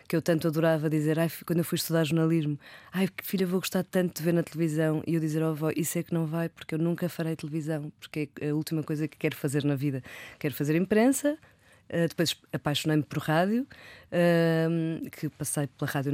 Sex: female